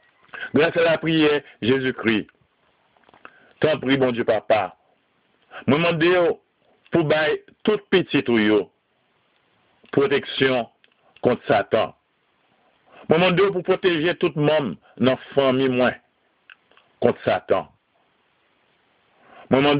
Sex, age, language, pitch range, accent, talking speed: male, 50-69, French, 130-170 Hz, French, 95 wpm